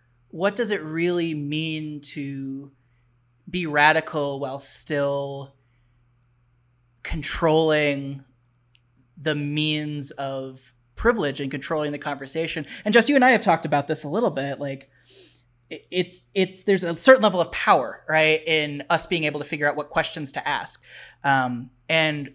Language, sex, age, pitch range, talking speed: English, male, 20-39, 135-165 Hz, 145 wpm